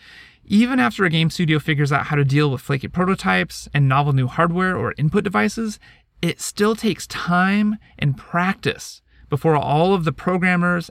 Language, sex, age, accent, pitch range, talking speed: English, male, 30-49, American, 145-190 Hz, 170 wpm